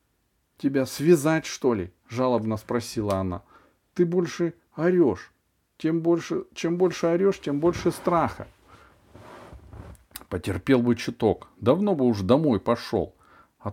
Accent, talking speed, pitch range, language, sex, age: native, 125 wpm, 95-145 Hz, Russian, male, 40-59